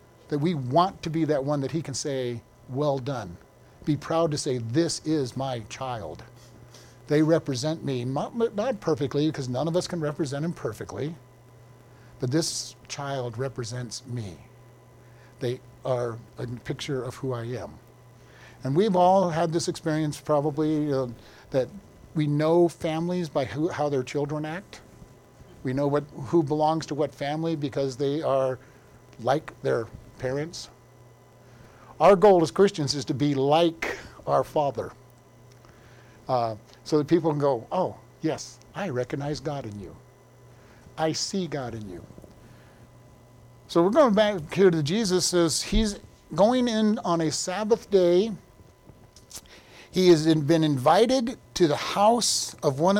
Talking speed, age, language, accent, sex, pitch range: 150 wpm, 50-69, English, American, male, 125-165 Hz